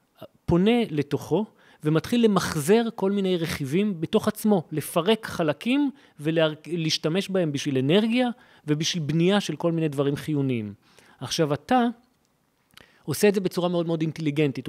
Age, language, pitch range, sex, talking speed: 40-59, Hebrew, 145-205 Hz, male, 125 wpm